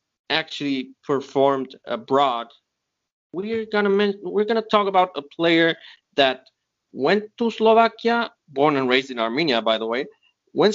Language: English